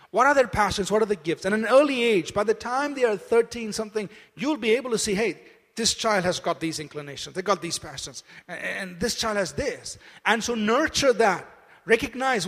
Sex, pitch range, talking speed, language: male, 180-225 Hz, 220 wpm, English